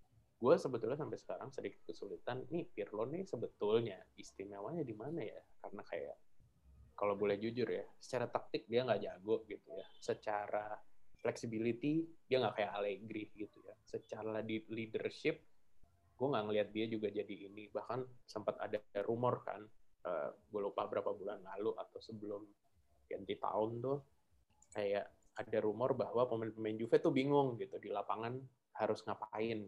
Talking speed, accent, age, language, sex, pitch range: 150 wpm, native, 20-39, Indonesian, male, 105-135 Hz